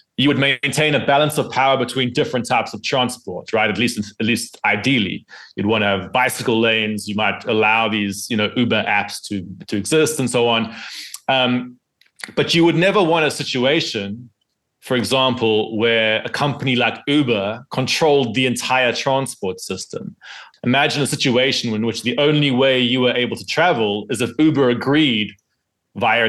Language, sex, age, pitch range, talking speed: English, male, 30-49, 110-140 Hz, 175 wpm